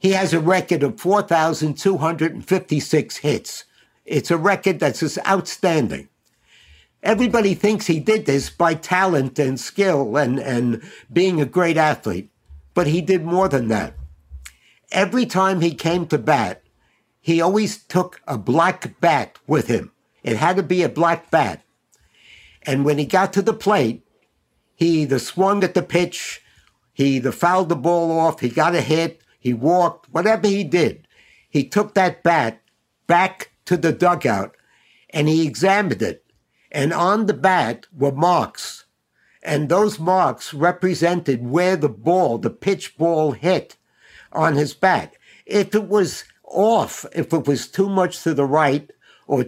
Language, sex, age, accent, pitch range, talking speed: English, male, 60-79, American, 145-190 Hz, 155 wpm